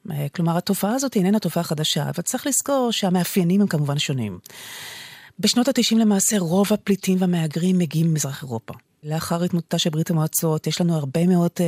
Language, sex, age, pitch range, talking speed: Hebrew, female, 30-49, 160-195 Hz, 160 wpm